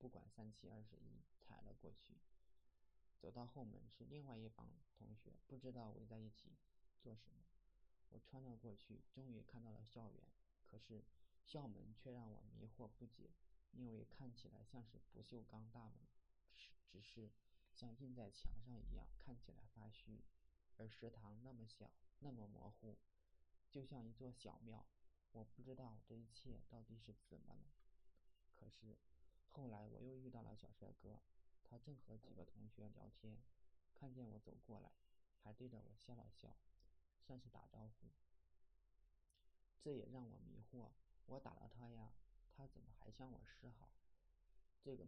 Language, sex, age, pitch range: Chinese, male, 20-39, 95-120 Hz